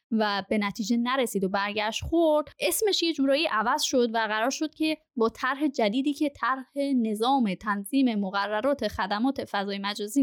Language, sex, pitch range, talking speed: Persian, female, 215-280 Hz, 160 wpm